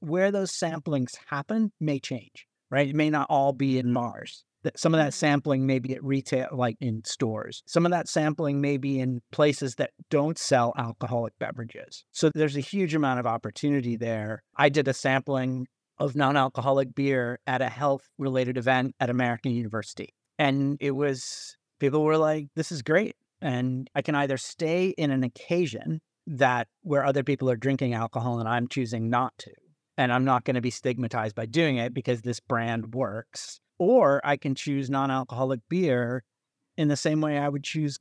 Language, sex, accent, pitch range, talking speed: English, male, American, 120-145 Hz, 185 wpm